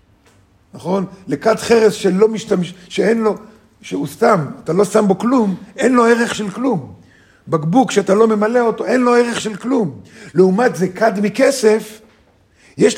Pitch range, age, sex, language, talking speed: 145-210 Hz, 50-69, male, Hebrew, 155 wpm